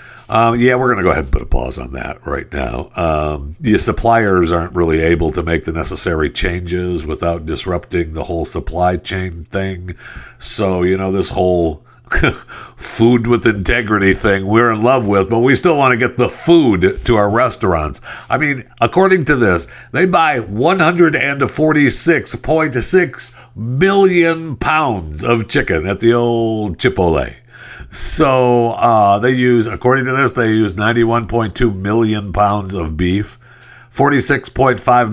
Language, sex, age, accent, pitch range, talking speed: English, male, 60-79, American, 90-125 Hz, 150 wpm